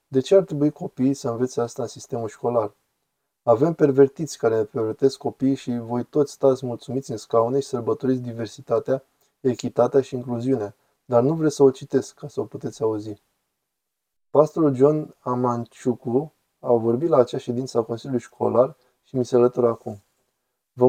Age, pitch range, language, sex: 20-39, 120-135 Hz, Romanian, male